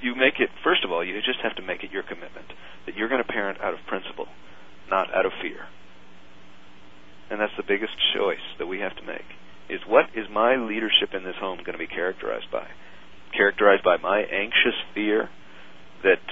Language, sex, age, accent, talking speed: English, male, 40-59, American, 200 wpm